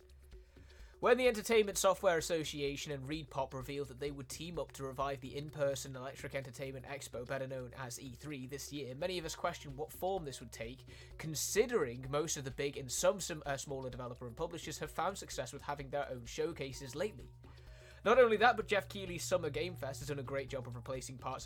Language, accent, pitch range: Italian, British, 125-155 Hz